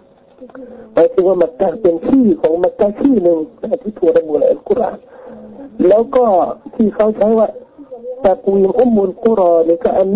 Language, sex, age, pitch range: Thai, male, 50-69, 175-255 Hz